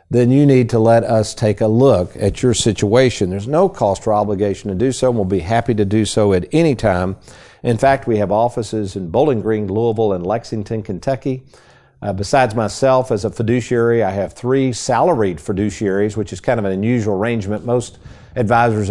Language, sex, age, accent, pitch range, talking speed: English, male, 50-69, American, 100-125 Hz, 195 wpm